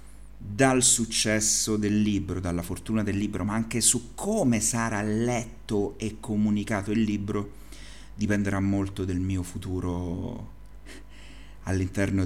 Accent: native